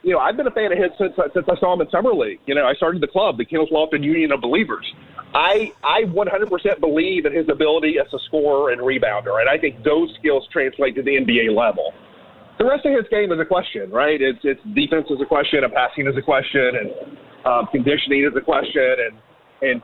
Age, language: 40-59, English